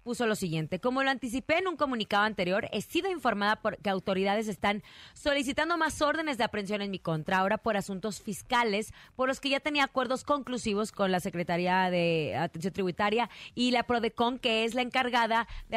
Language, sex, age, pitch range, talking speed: Spanish, female, 30-49, 205-260 Hz, 190 wpm